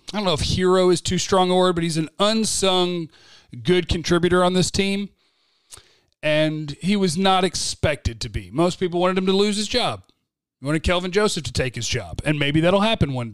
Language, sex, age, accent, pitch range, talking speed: English, male, 40-59, American, 140-190 Hz, 210 wpm